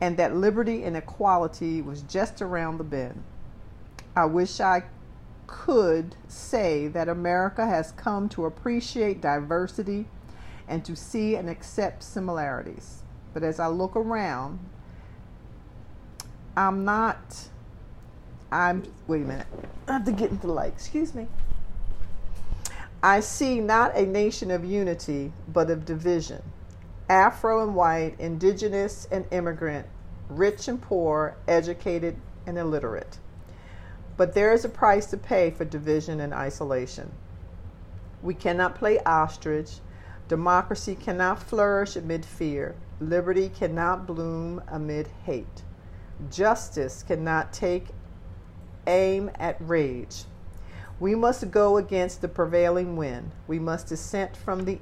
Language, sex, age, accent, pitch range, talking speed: English, female, 50-69, American, 125-190 Hz, 125 wpm